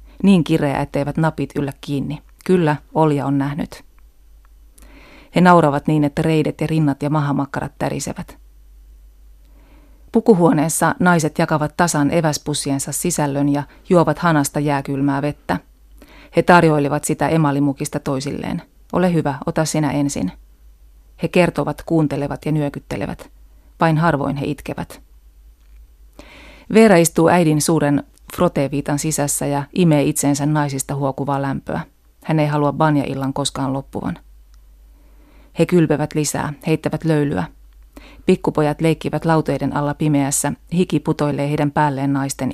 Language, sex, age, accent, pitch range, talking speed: Finnish, female, 30-49, native, 140-155 Hz, 115 wpm